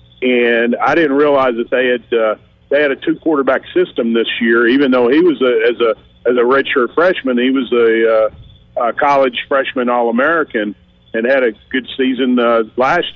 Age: 50-69